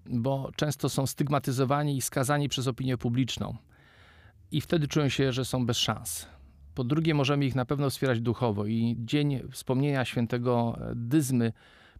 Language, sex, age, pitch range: Polish, male, 50-69, 115-135 Hz